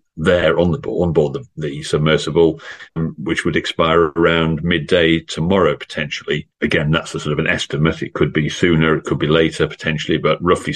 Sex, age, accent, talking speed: male, 40-59, British, 190 wpm